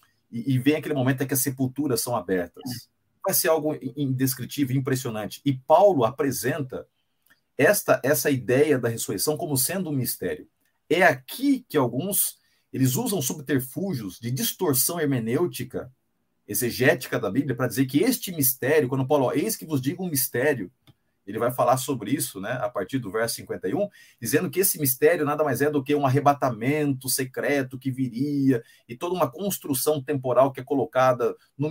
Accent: Brazilian